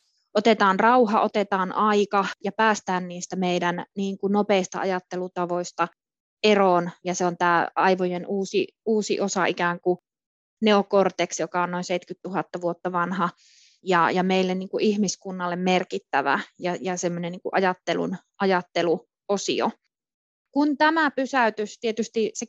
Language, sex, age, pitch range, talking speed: Finnish, female, 20-39, 185-230 Hz, 125 wpm